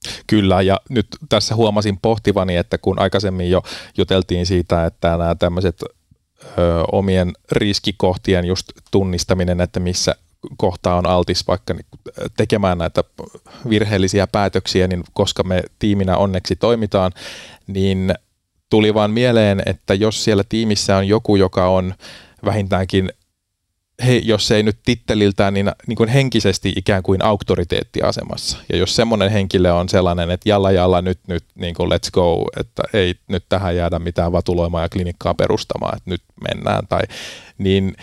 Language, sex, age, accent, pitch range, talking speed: Finnish, male, 30-49, native, 90-105 Hz, 140 wpm